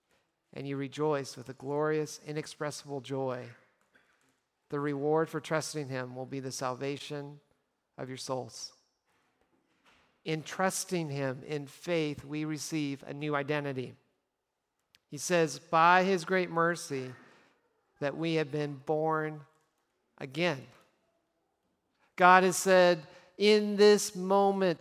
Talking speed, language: 115 wpm, English